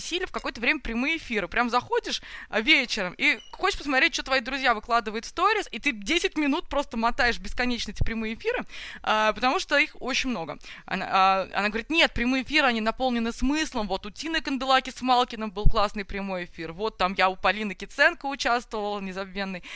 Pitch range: 215-285 Hz